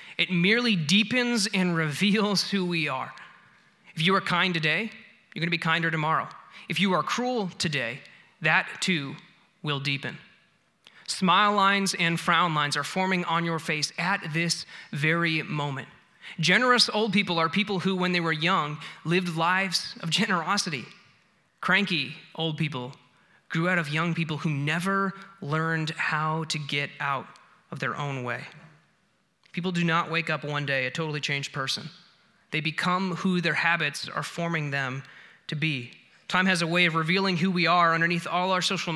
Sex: male